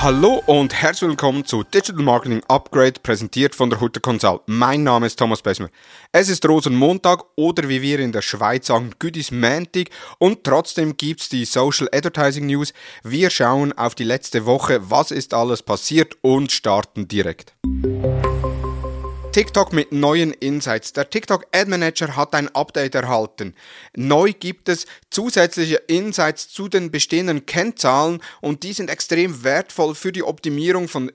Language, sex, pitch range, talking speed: German, male, 130-175 Hz, 155 wpm